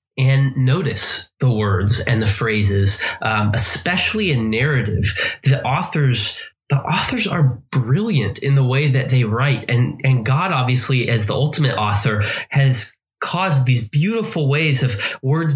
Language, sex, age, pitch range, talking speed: English, male, 20-39, 105-135 Hz, 145 wpm